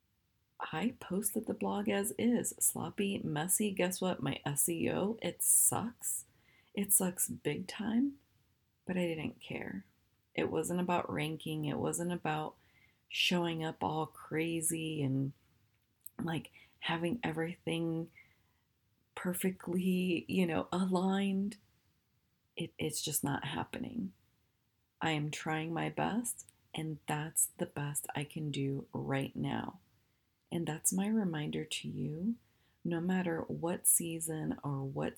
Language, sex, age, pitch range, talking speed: English, female, 30-49, 145-185 Hz, 125 wpm